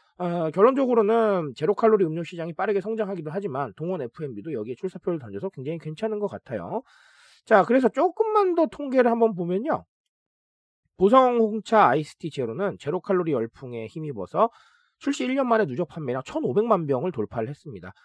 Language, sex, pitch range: Korean, male, 135-225 Hz